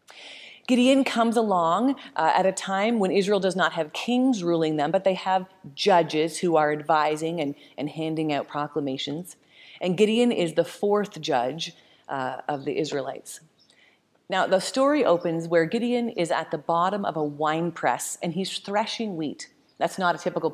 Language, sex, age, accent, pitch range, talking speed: English, female, 30-49, American, 155-205 Hz, 170 wpm